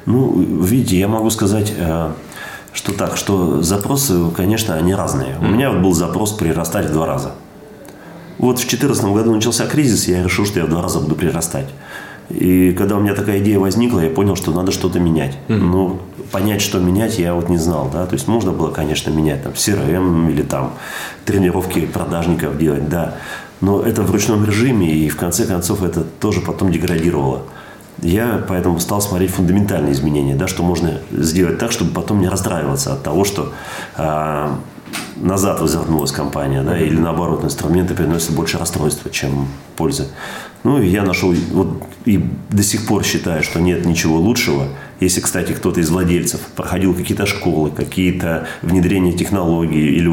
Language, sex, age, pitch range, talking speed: Russian, male, 30-49, 80-100 Hz, 160 wpm